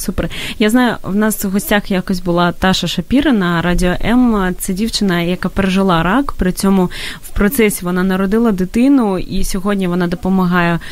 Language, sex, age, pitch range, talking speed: Ukrainian, female, 20-39, 185-215 Hz, 160 wpm